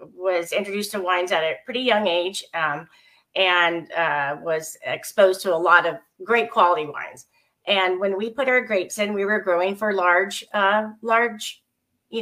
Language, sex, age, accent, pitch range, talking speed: English, female, 40-59, American, 175-220 Hz, 175 wpm